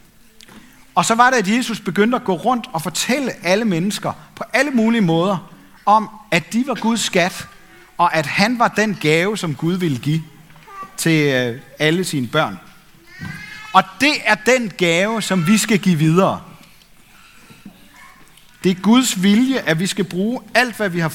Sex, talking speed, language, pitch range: male, 170 wpm, Danish, 160-215 Hz